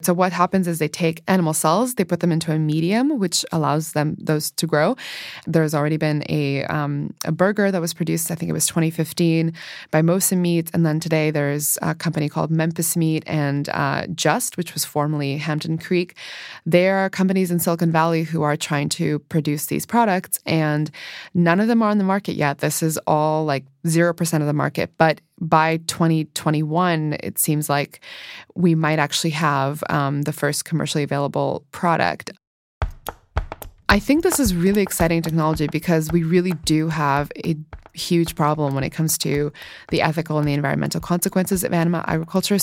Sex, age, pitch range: female, 20-39, 155-185 Hz